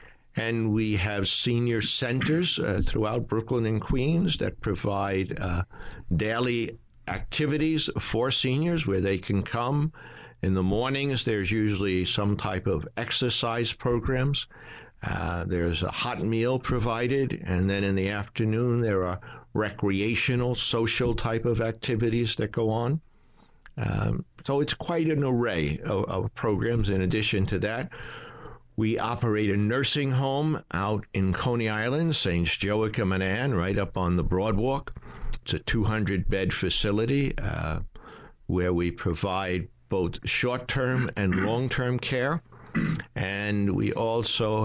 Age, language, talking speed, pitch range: 60-79, English, 135 wpm, 100-125 Hz